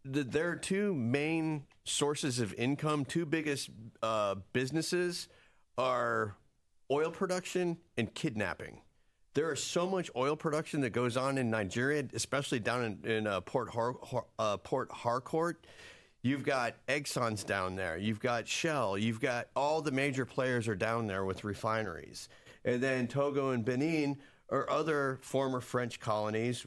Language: English